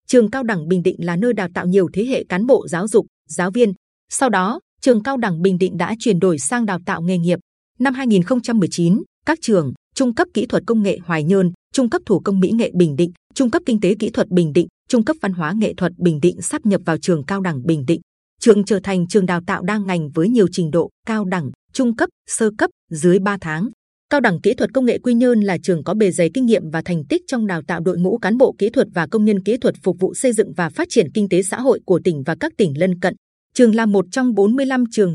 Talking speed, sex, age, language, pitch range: 265 wpm, female, 20-39, Vietnamese, 180-235 Hz